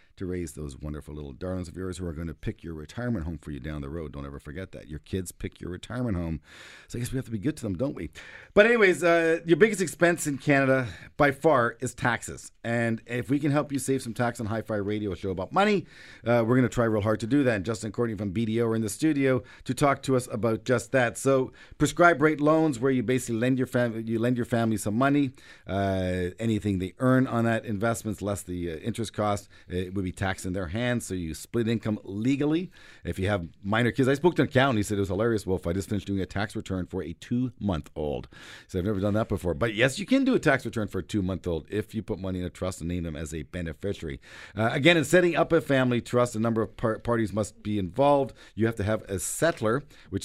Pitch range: 95-130 Hz